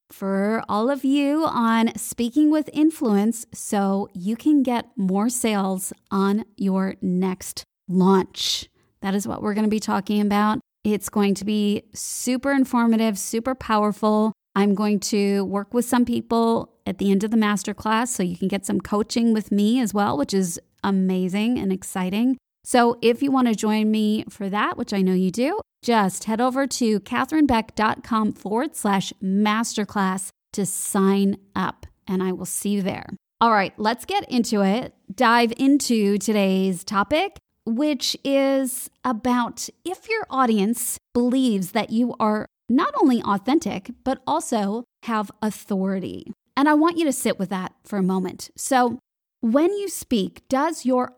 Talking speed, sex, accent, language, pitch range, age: 160 wpm, female, American, English, 200-250 Hz, 20-39